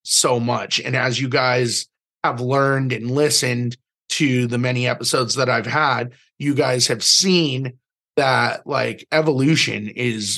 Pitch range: 115-130 Hz